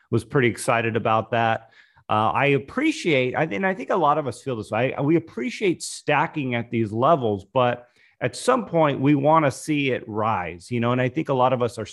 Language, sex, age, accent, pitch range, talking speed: English, male, 40-59, American, 105-140 Hz, 230 wpm